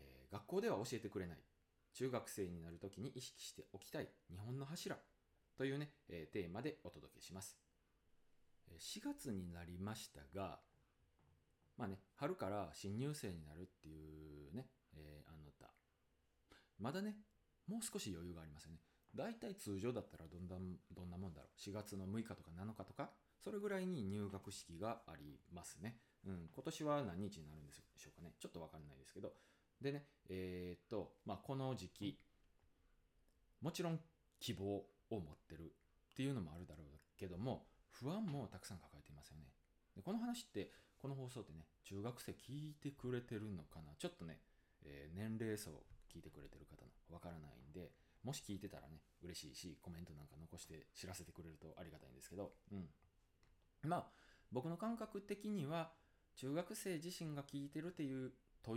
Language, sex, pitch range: Japanese, male, 80-130 Hz